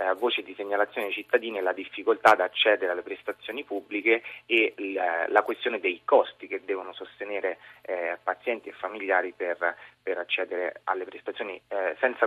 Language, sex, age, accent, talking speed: Italian, male, 30-49, native, 140 wpm